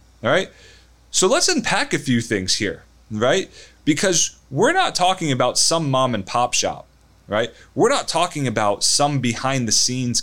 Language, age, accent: English, 20-39, American